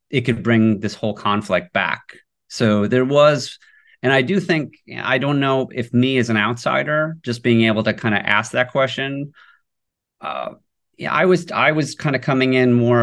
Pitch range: 105-125 Hz